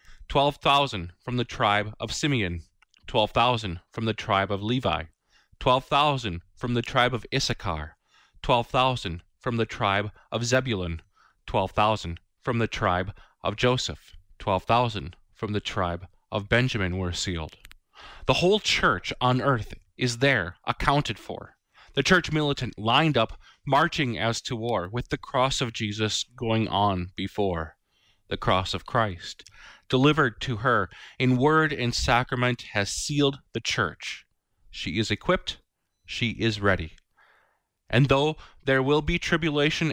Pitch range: 95-130 Hz